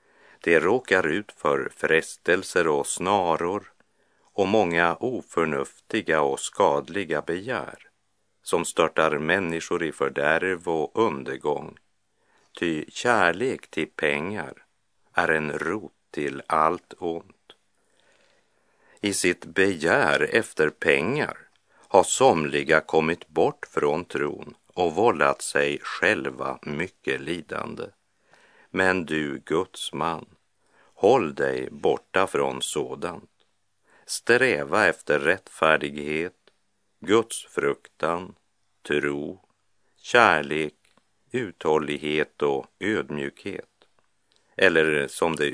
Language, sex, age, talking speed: Czech, male, 50-69, 90 wpm